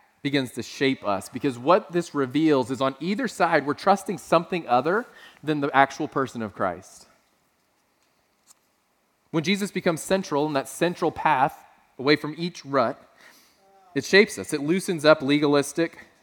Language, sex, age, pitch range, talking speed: English, male, 30-49, 140-180 Hz, 150 wpm